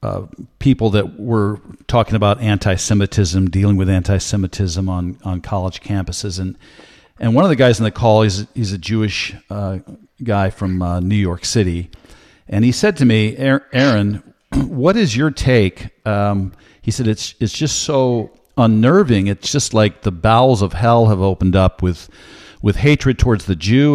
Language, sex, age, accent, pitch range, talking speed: English, male, 50-69, American, 95-125 Hz, 170 wpm